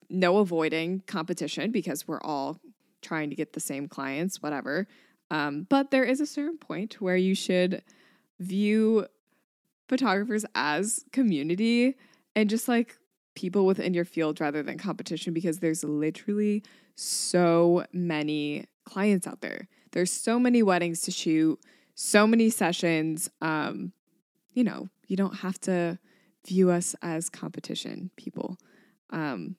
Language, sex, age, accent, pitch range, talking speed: English, female, 20-39, American, 170-220 Hz, 135 wpm